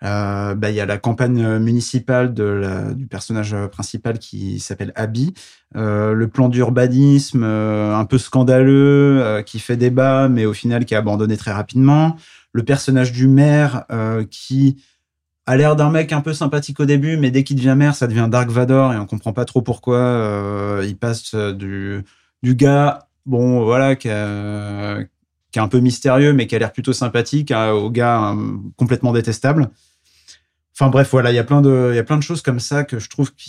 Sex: male